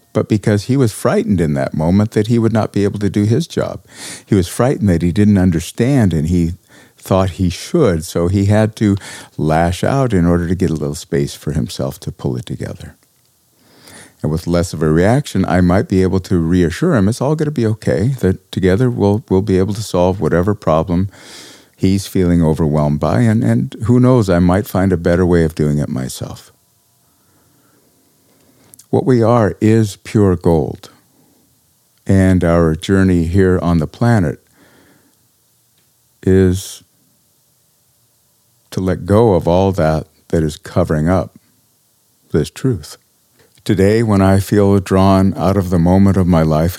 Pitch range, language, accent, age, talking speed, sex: 85-110 Hz, English, American, 50-69, 170 wpm, male